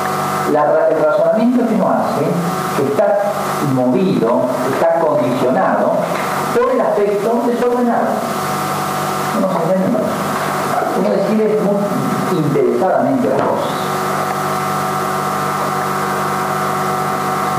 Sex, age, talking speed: male, 50-69, 85 wpm